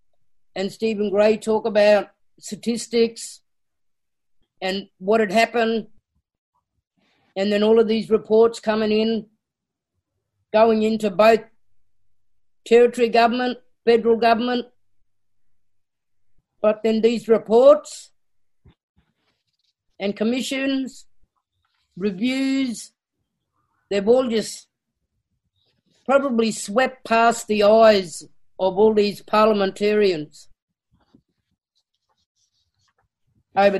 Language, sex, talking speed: English, female, 80 wpm